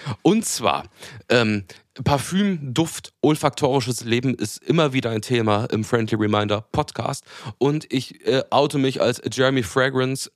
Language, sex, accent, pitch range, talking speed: German, male, German, 110-135 Hz, 140 wpm